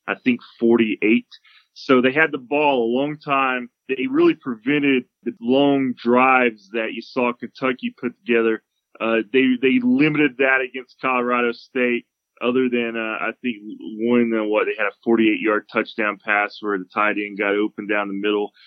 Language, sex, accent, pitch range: English, male, American, 115-135 Hz